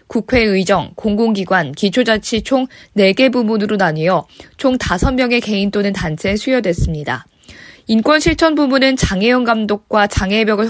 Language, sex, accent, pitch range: Korean, female, native, 195-245 Hz